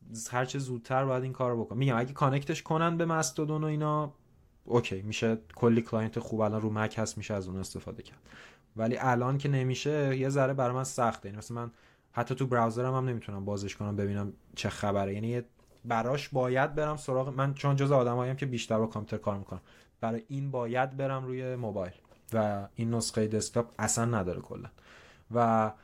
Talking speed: 185 wpm